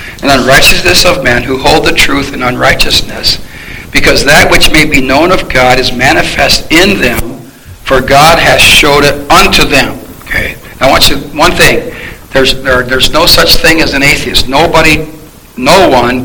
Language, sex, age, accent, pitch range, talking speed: English, male, 60-79, American, 130-160 Hz, 175 wpm